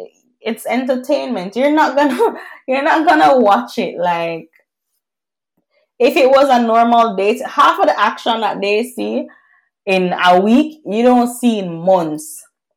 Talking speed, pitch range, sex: 150 wpm, 180-230 Hz, female